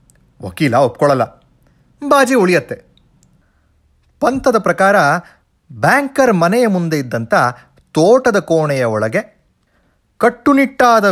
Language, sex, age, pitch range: Kannada, male, 30-49, 150-225 Hz